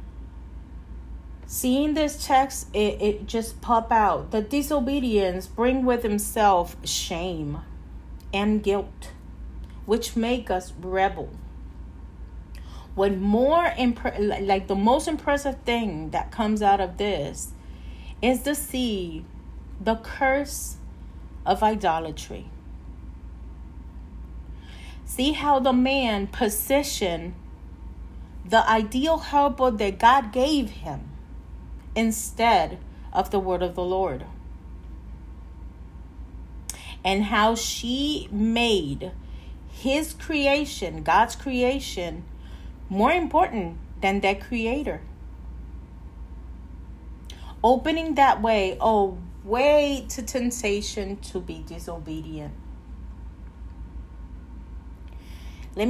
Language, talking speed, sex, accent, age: Spanish, 90 wpm, female, American, 40-59